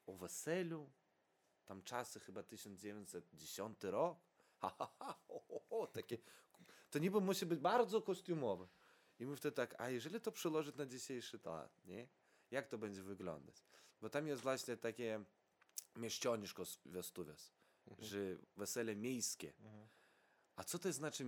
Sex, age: male, 20-39